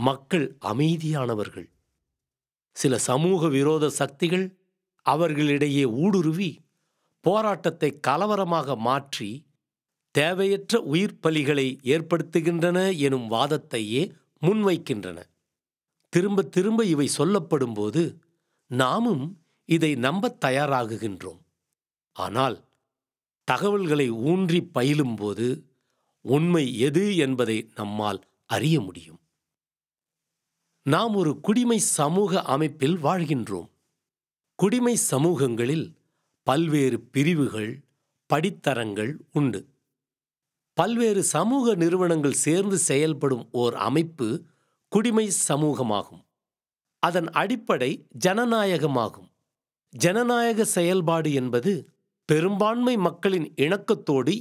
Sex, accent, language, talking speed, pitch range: male, native, Tamil, 70 wpm, 130-180 Hz